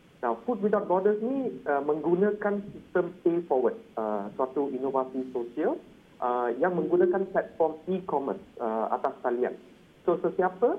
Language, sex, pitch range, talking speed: Malay, male, 135-190 Hz, 140 wpm